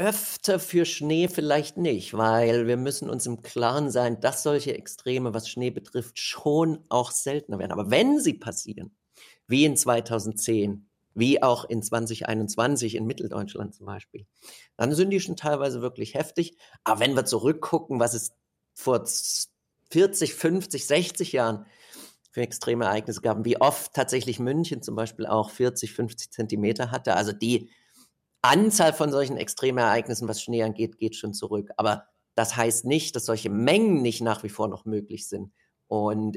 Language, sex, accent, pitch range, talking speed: German, male, German, 115-155 Hz, 160 wpm